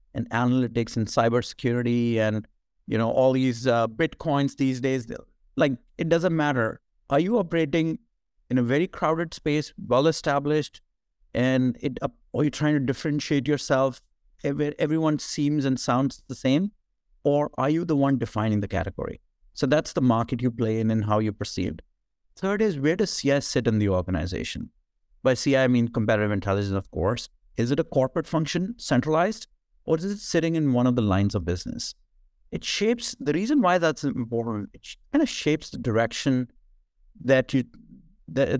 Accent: Indian